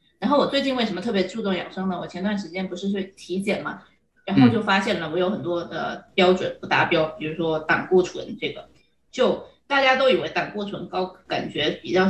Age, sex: 20-39, female